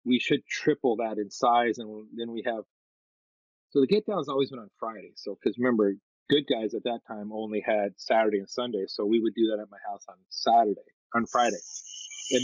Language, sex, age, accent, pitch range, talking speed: English, male, 40-59, American, 110-135 Hz, 215 wpm